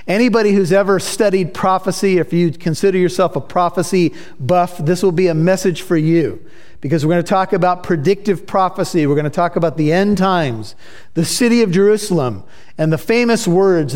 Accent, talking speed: American, 175 wpm